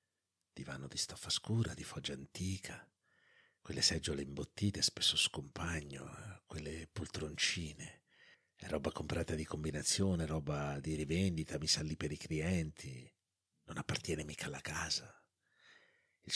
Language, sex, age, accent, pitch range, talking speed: Italian, male, 50-69, native, 80-110 Hz, 115 wpm